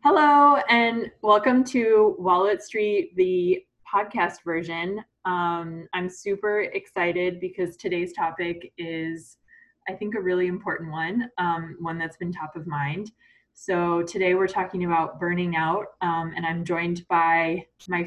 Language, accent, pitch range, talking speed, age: English, American, 165-200 Hz, 145 wpm, 20-39